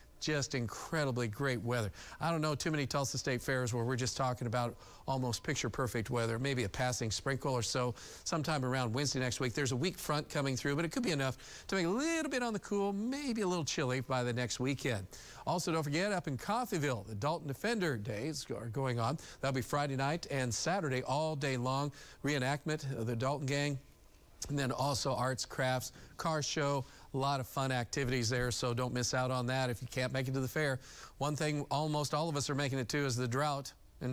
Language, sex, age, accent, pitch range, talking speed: English, male, 50-69, American, 125-145 Hz, 220 wpm